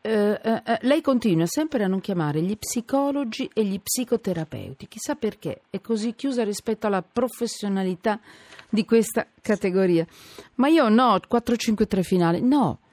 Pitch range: 170-245 Hz